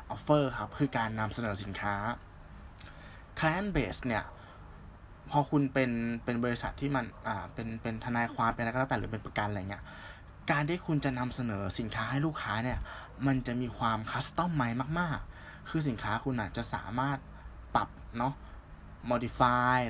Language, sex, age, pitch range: Thai, male, 20-39, 100-135 Hz